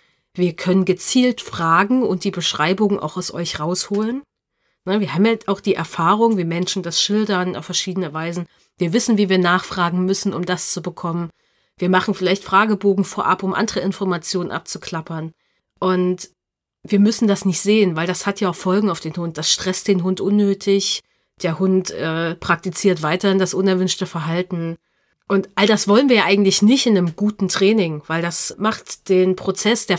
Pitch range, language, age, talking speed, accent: 175-205 Hz, German, 30-49, 180 wpm, German